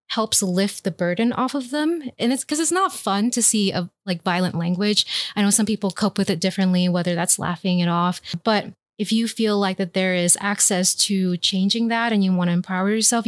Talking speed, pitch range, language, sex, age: 225 wpm, 185-220 Hz, English, female, 20-39